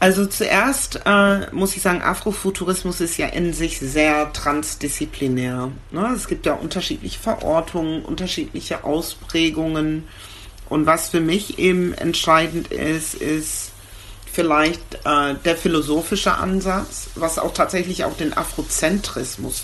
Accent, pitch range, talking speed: German, 140-165 Hz, 120 wpm